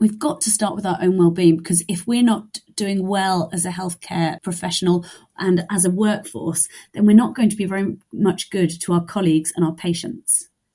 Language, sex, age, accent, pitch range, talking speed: English, female, 30-49, British, 175-220 Hz, 205 wpm